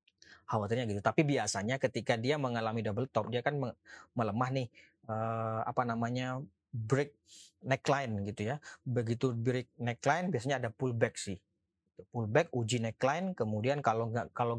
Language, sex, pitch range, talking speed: Indonesian, male, 105-145 Hz, 130 wpm